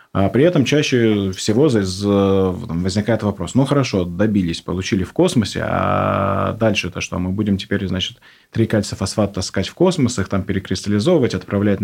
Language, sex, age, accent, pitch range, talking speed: Russian, male, 20-39, native, 100-120 Hz, 135 wpm